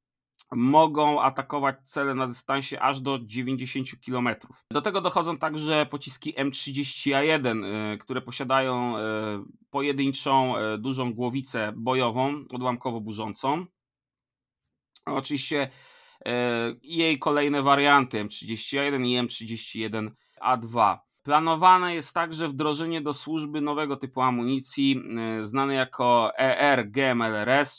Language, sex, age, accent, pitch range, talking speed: Polish, male, 30-49, native, 120-145 Hz, 95 wpm